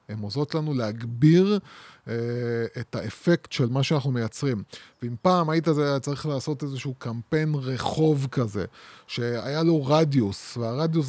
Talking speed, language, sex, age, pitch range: 135 wpm, Hebrew, male, 20-39, 130-170 Hz